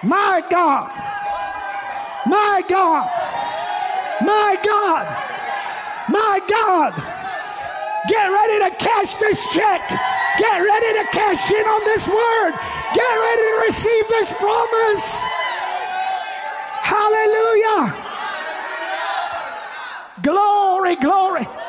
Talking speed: 85 wpm